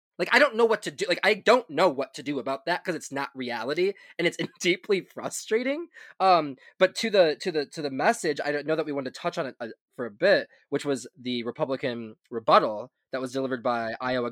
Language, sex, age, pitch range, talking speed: English, male, 20-39, 120-175 Hz, 230 wpm